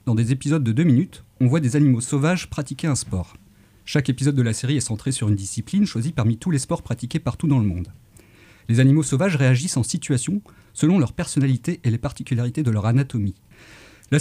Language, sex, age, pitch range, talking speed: French, male, 40-59, 115-150 Hz, 210 wpm